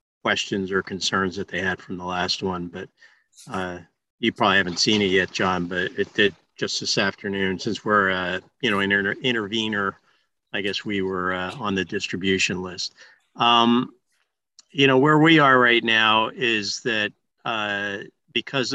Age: 50-69